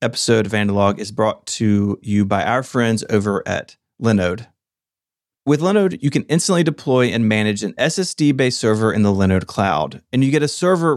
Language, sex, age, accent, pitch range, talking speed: English, male, 30-49, American, 110-150 Hz, 180 wpm